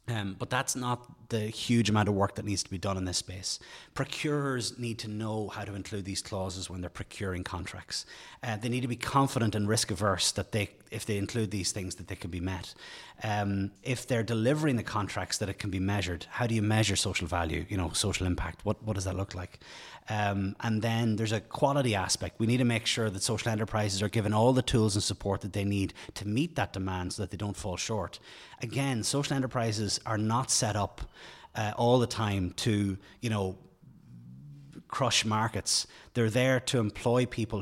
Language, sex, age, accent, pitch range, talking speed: English, male, 30-49, Irish, 100-115 Hz, 215 wpm